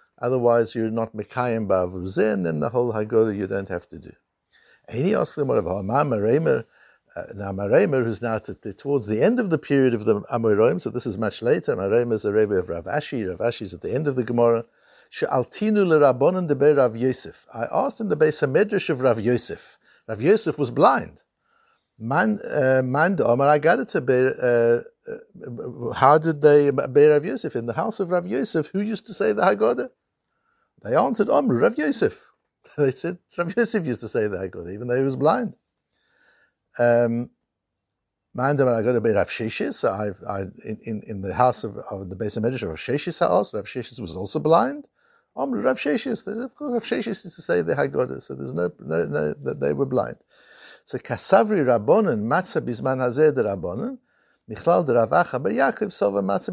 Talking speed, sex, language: 170 wpm, male, English